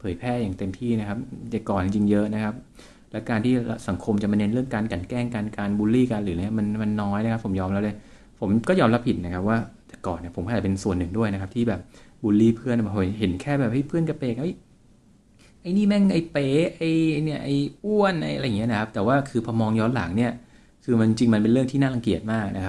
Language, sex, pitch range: Thai, male, 100-125 Hz